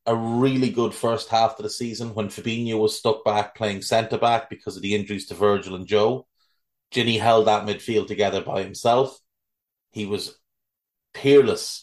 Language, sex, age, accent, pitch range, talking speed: English, male, 30-49, Irish, 105-130 Hz, 165 wpm